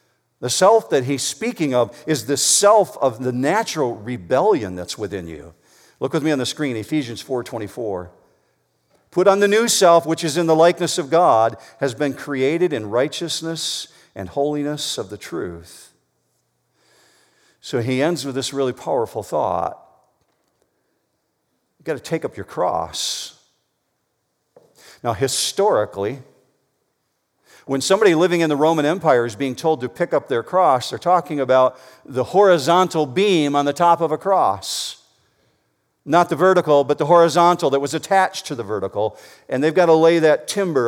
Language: English